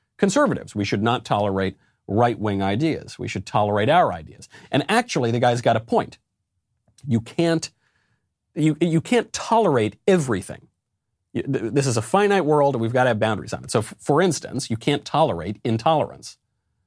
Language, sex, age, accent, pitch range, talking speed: English, male, 40-59, American, 105-140 Hz, 175 wpm